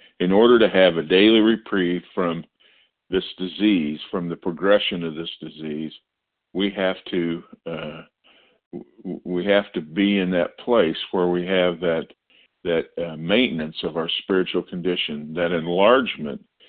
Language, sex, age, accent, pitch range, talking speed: English, male, 50-69, American, 85-100 Hz, 145 wpm